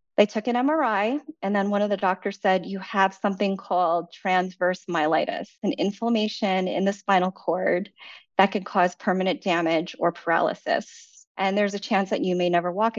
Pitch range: 180-225 Hz